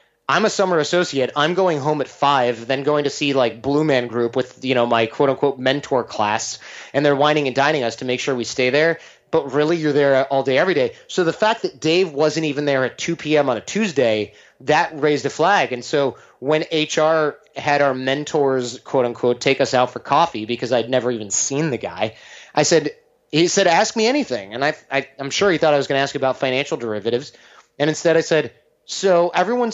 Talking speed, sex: 225 wpm, male